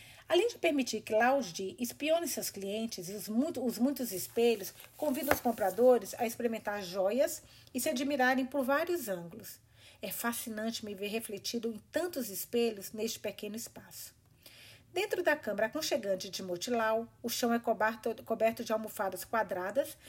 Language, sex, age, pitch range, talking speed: Portuguese, female, 40-59, 200-250 Hz, 150 wpm